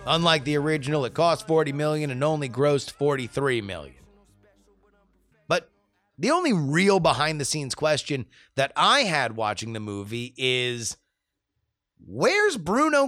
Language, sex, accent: English, male, American